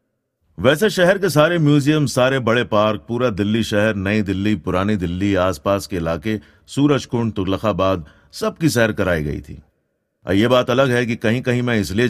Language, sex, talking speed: Hindi, male, 170 wpm